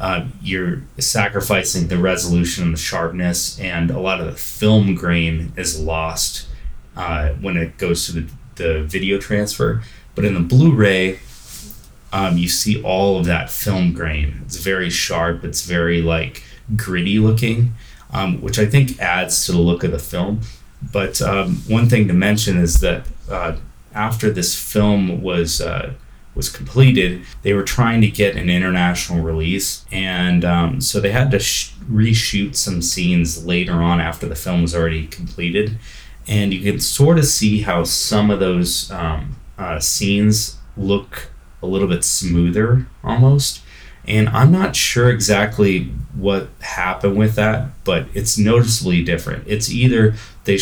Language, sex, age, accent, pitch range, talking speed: English, male, 30-49, American, 85-105 Hz, 160 wpm